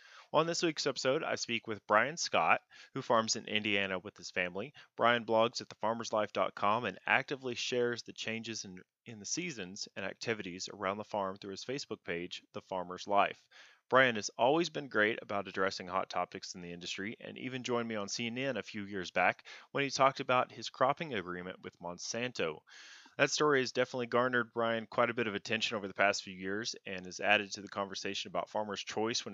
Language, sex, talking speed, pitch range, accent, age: English, male, 200 wpm, 95-120 Hz, American, 30-49